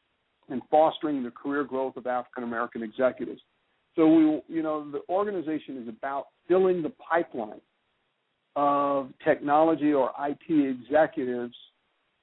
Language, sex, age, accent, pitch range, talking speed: English, male, 50-69, American, 130-160 Hz, 125 wpm